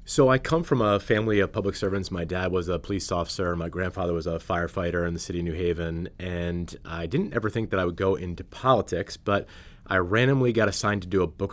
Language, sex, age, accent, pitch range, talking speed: English, male, 30-49, American, 85-100 Hz, 240 wpm